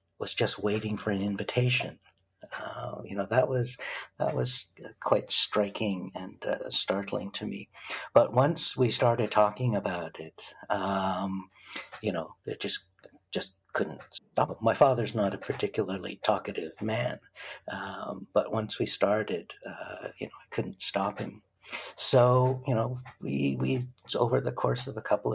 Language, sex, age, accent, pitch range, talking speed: English, male, 60-79, American, 100-110 Hz, 155 wpm